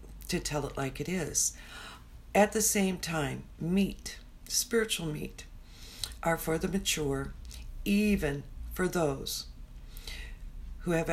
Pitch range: 120-180 Hz